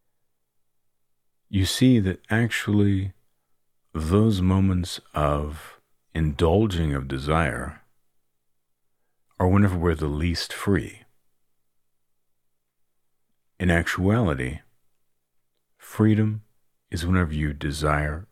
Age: 50-69